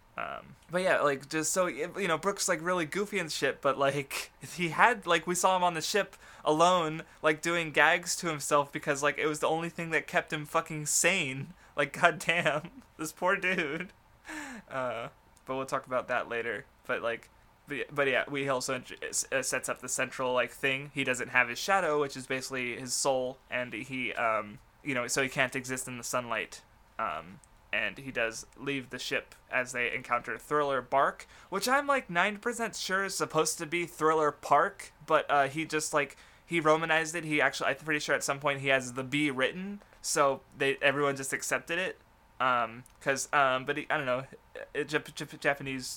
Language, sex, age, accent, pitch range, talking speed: English, male, 20-39, American, 135-170 Hz, 200 wpm